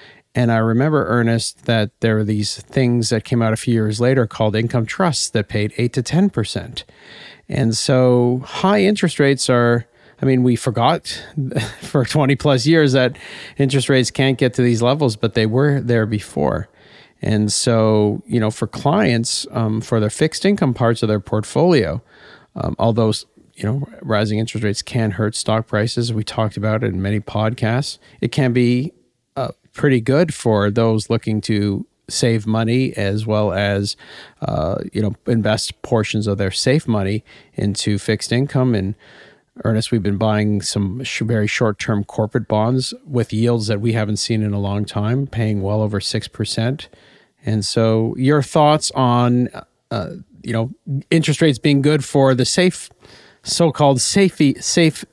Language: English